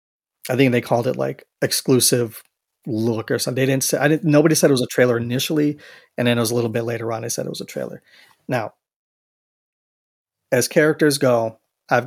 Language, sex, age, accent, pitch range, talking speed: English, male, 30-49, American, 120-145 Hz, 210 wpm